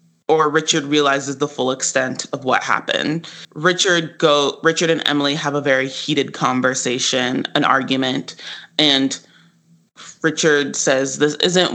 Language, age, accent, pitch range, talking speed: English, 20-39, American, 135-155 Hz, 135 wpm